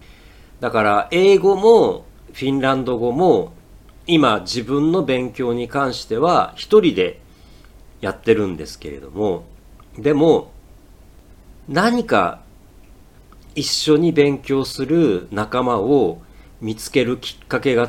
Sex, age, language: male, 50-69, Japanese